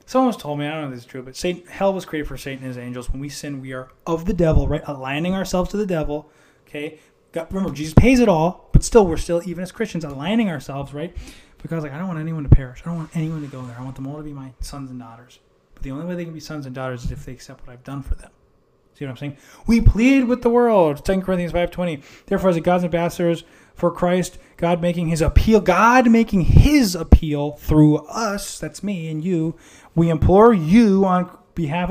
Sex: male